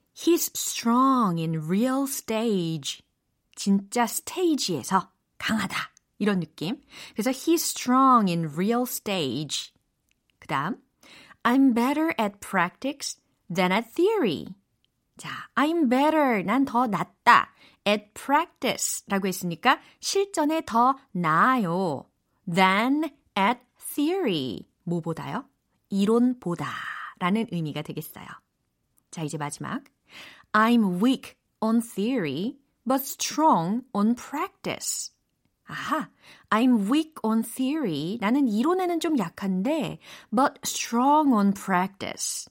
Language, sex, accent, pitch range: Korean, female, native, 190-275 Hz